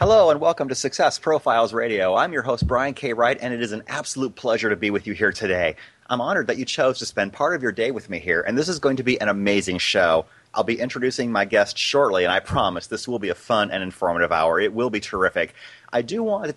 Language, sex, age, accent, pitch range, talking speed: English, male, 30-49, American, 100-140 Hz, 265 wpm